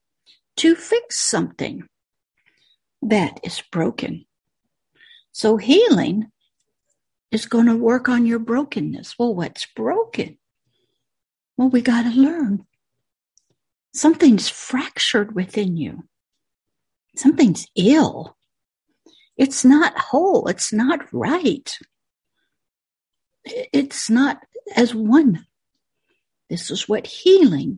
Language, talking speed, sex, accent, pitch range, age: English, 95 wpm, female, American, 215-300 Hz, 60-79